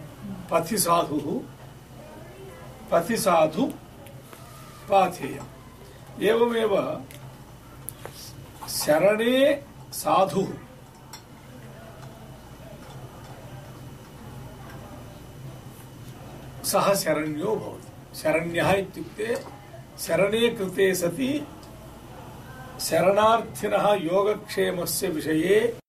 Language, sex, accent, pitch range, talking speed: English, male, Indian, 130-190 Hz, 60 wpm